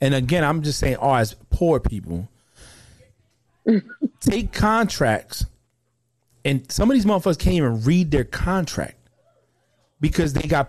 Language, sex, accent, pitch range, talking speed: English, male, American, 115-155 Hz, 135 wpm